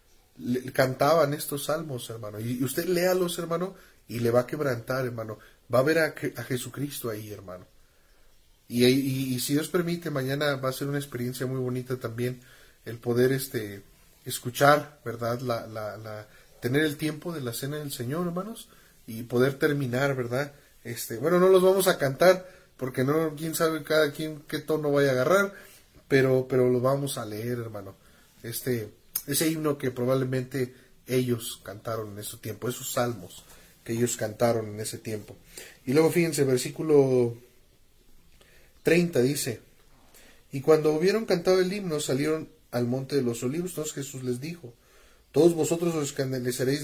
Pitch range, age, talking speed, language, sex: 120-155 Hz, 30-49, 165 wpm, Spanish, male